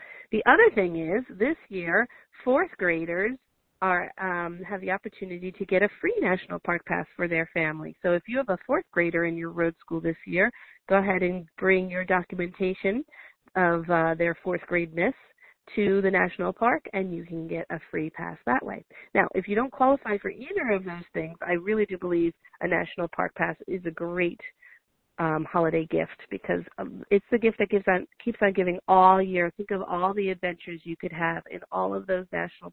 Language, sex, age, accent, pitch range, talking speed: English, female, 40-59, American, 175-200 Hz, 205 wpm